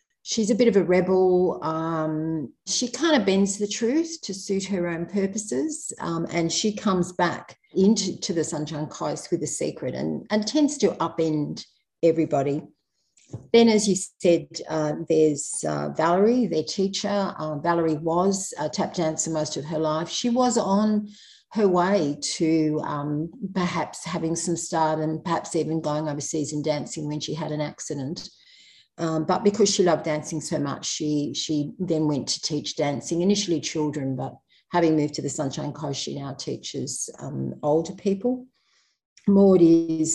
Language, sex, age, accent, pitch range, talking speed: English, female, 50-69, Australian, 155-195 Hz, 165 wpm